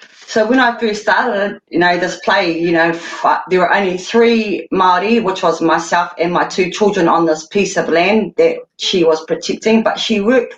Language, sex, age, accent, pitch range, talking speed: English, female, 30-49, Australian, 175-250 Hz, 200 wpm